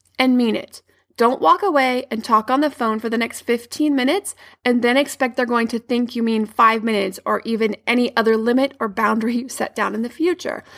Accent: American